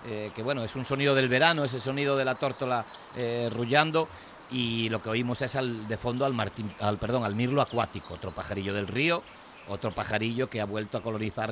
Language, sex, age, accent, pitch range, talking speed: Spanish, male, 50-69, Spanish, 115-150 Hz, 215 wpm